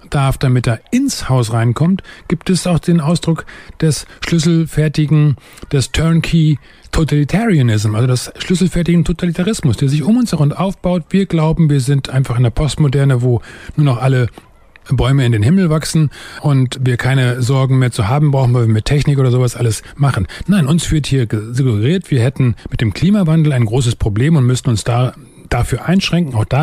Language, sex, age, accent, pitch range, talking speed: German, male, 40-59, German, 125-160 Hz, 180 wpm